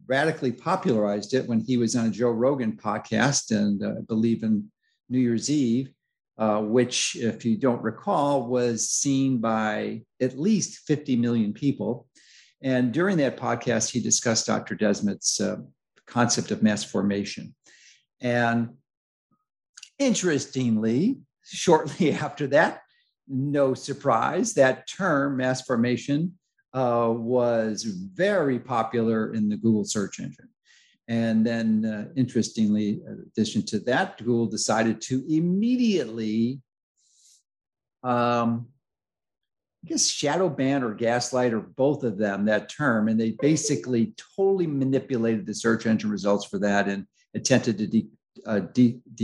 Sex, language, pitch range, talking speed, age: male, English, 110-135 Hz, 130 wpm, 50-69